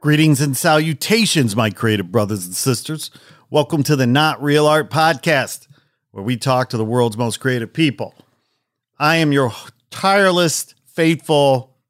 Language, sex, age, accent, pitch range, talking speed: English, male, 40-59, American, 115-140 Hz, 145 wpm